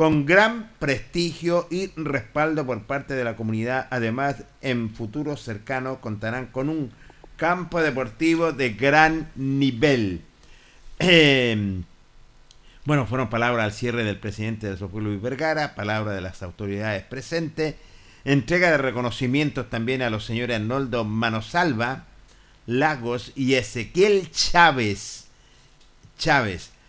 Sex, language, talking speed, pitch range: male, Spanish, 120 wpm, 110-145 Hz